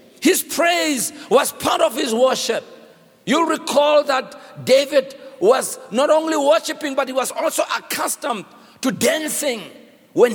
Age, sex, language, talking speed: 50-69, male, English, 135 wpm